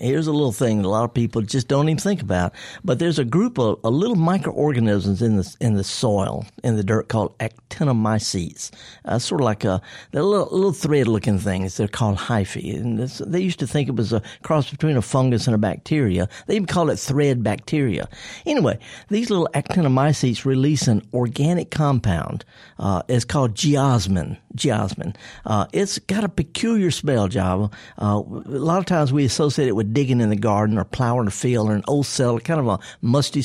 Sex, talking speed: male, 200 wpm